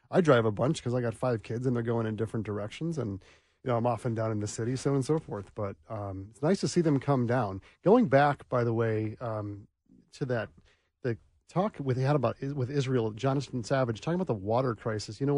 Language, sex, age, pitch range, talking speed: English, male, 40-59, 110-135 Hz, 240 wpm